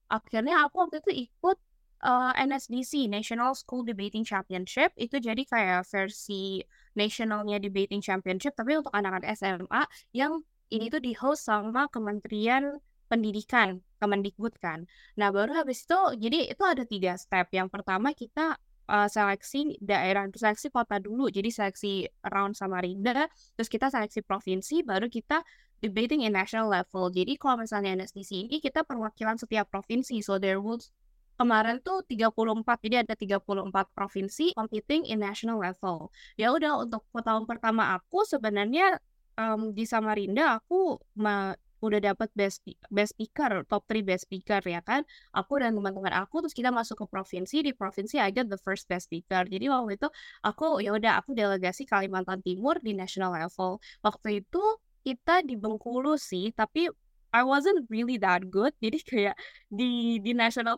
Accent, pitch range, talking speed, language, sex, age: Indonesian, 200-260 Hz, 150 wpm, English, female, 20-39